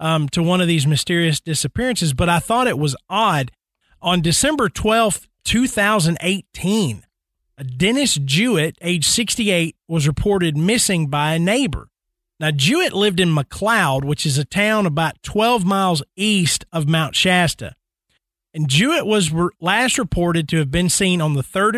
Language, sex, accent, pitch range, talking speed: English, male, American, 155-215 Hz, 150 wpm